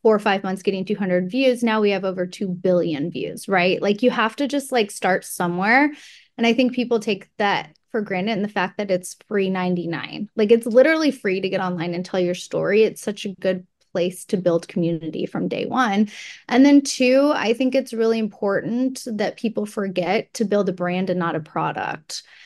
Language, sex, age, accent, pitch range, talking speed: English, female, 20-39, American, 190-240 Hz, 210 wpm